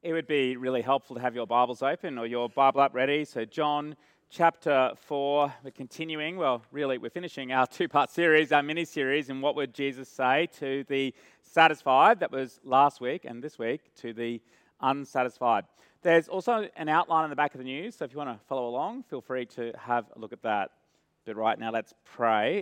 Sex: male